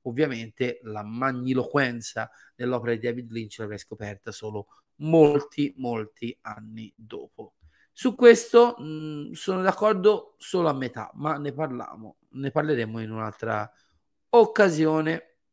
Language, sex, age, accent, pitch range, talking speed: Italian, male, 30-49, native, 115-150 Hz, 110 wpm